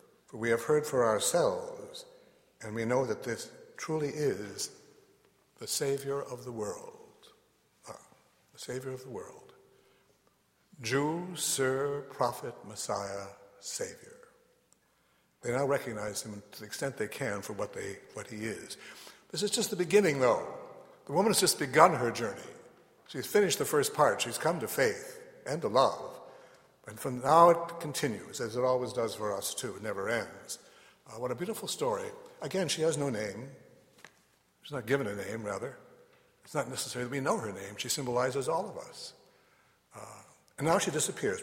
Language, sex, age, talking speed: English, male, 60-79, 170 wpm